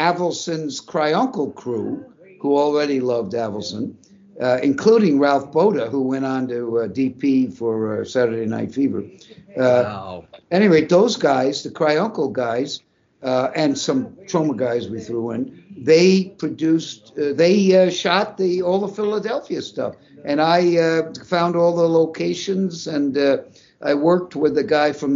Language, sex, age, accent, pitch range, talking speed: English, male, 60-79, American, 130-170 Hz, 155 wpm